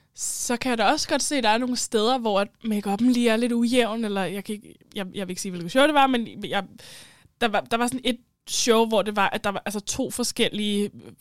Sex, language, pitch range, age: female, Danish, 205-260 Hz, 10-29